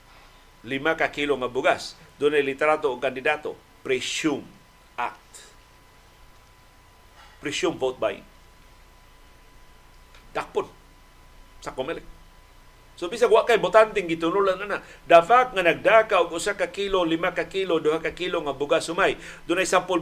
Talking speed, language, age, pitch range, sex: 115 wpm, Filipino, 50-69, 145-195 Hz, male